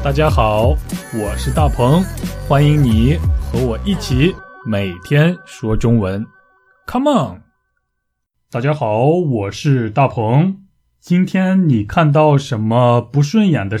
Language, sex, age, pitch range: Chinese, male, 20-39, 115-165 Hz